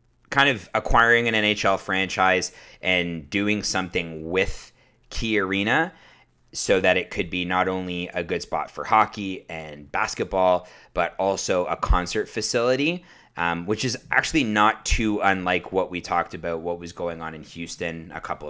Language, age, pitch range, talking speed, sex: English, 30-49, 80-100 Hz, 160 wpm, male